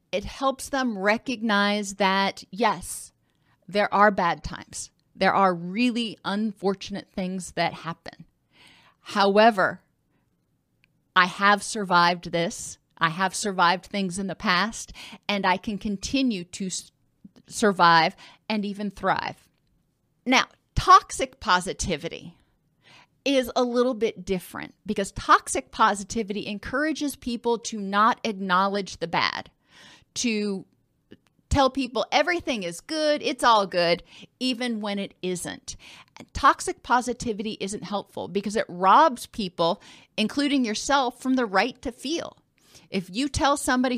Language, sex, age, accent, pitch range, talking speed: English, female, 40-59, American, 195-245 Hz, 120 wpm